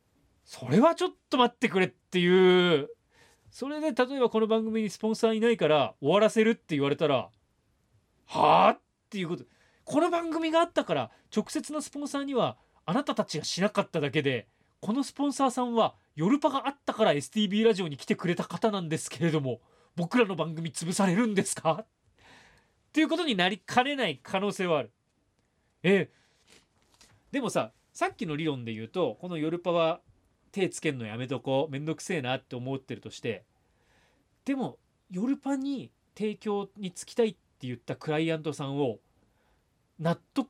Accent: native